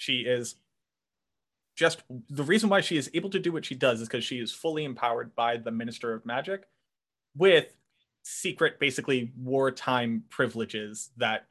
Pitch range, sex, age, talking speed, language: 115-165 Hz, male, 30-49, 160 wpm, English